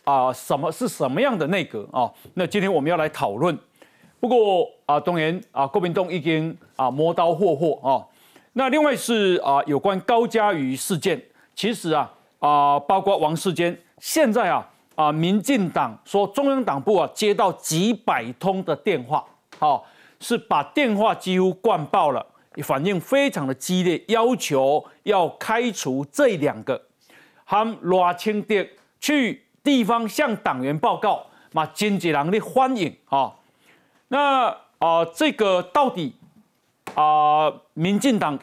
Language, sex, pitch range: Chinese, male, 165-230 Hz